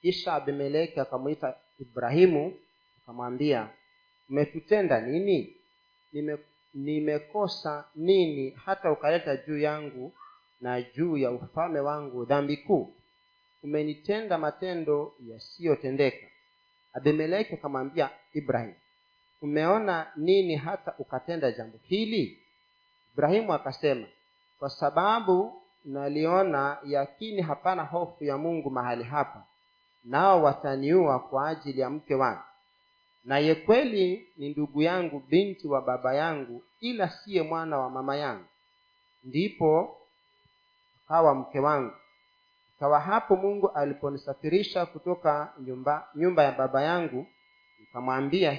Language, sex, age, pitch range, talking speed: Swahili, male, 40-59, 140-200 Hz, 100 wpm